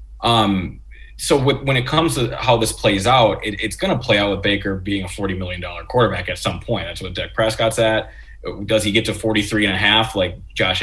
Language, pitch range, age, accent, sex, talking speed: English, 90-110 Hz, 20-39, American, male, 235 wpm